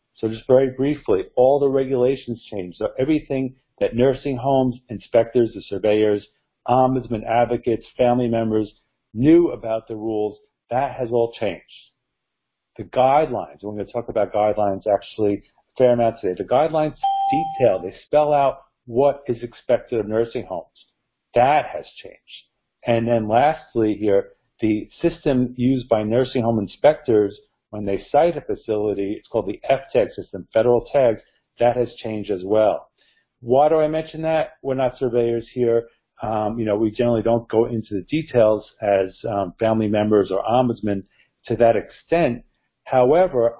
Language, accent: English, American